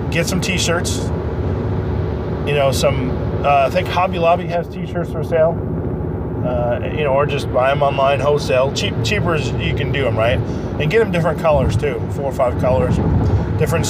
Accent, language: American, English